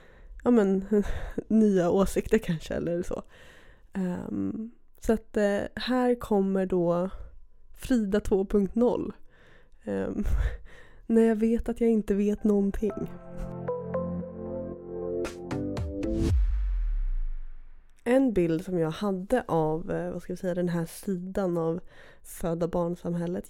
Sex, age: female, 20-39